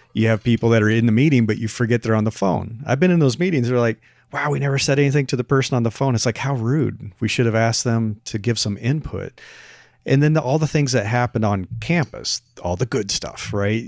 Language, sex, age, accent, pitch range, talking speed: English, male, 40-59, American, 105-130 Hz, 260 wpm